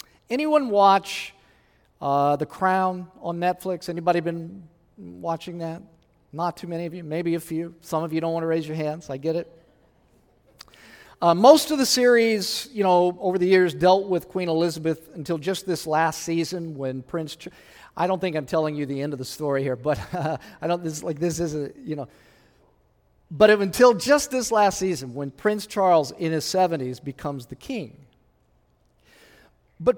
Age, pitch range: 40-59, 150-195 Hz